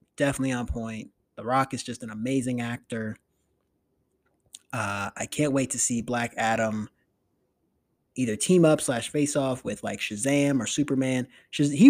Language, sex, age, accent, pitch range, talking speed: English, male, 20-39, American, 110-145 Hz, 150 wpm